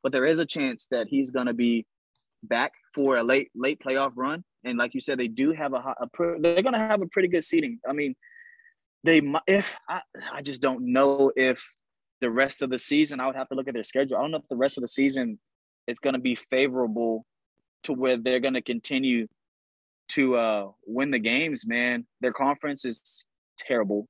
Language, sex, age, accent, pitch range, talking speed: English, male, 20-39, American, 115-155 Hz, 220 wpm